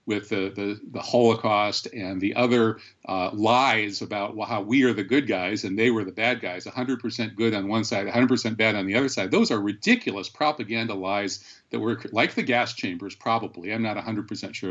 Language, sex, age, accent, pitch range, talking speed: English, male, 50-69, American, 105-130 Hz, 205 wpm